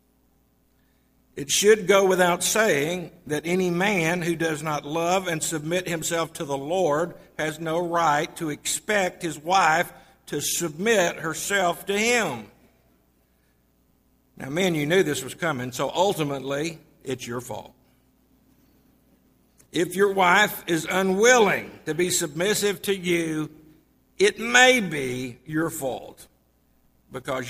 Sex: male